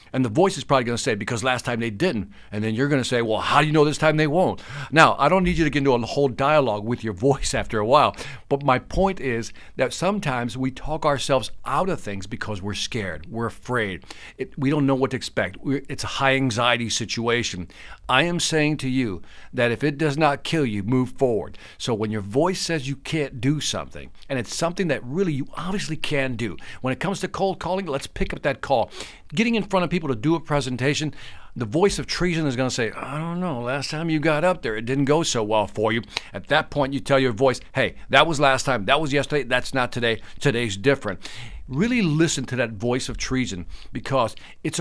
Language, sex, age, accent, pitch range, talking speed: English, male, 50-69, American, 115-150 Hz, 240 wpm